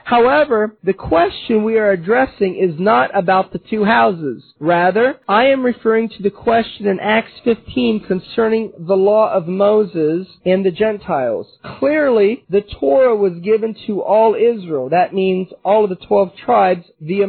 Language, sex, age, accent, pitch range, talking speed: English, male, 40-59, American, 190-235 Hz, 160 wpm